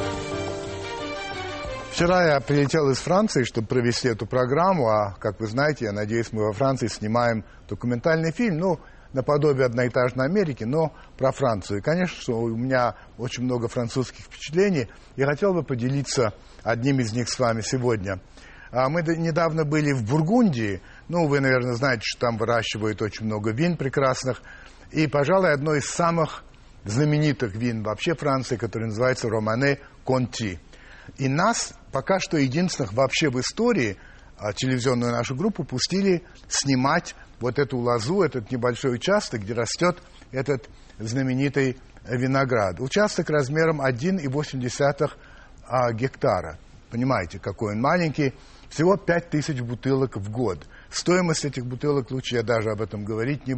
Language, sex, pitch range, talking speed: Russian, male, 115-150 Hz, 140 wpm